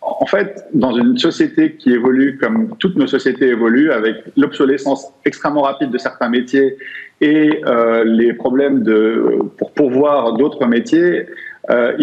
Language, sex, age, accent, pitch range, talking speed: French, male, 50-69, French, 120-205 Hz, 145 wpm